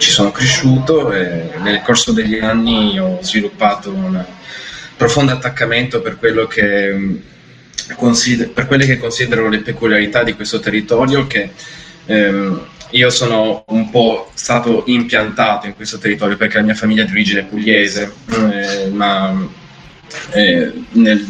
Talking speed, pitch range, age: 140 wpm, 100-160 Hz, 20-39